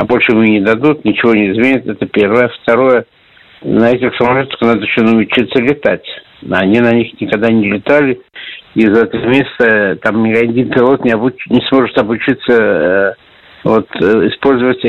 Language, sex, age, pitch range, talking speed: Russian, male, 60-79, 115-135 Hz, 160 wpm